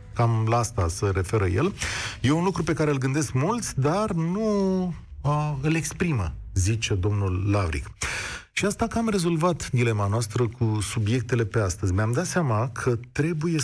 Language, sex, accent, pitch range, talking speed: Romanian, male, native, 105-135 Hz, 165 wpm